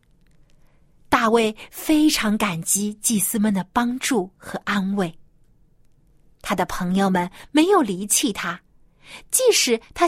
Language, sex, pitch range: Chinese, female, 160-245 Hz